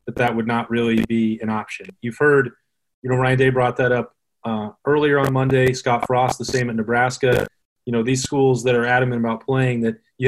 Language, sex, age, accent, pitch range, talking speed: English, male, 30-49, American, 115-130 Hz, 220 wpm